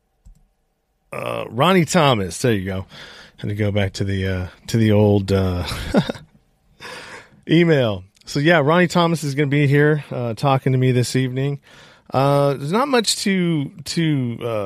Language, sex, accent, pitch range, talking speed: English, male, American, 105-140 Hz, 165 wpm